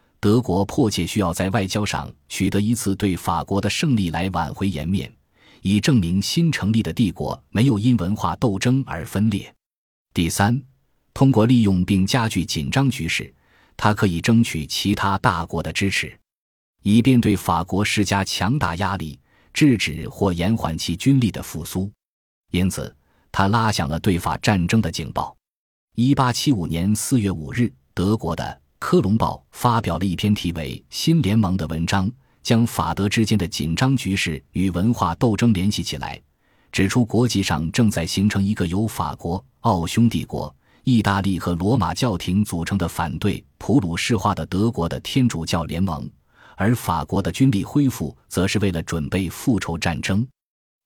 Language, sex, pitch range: Chinese, male, 85-115 Hz